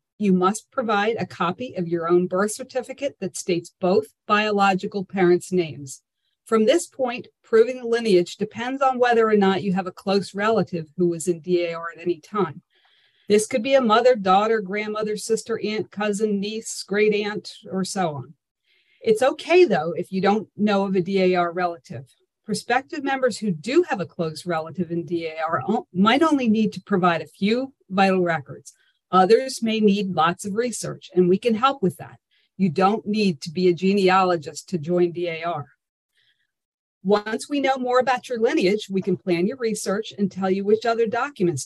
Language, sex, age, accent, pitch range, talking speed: English, female, 40-59, American, 180-220 Hz, 180 wpm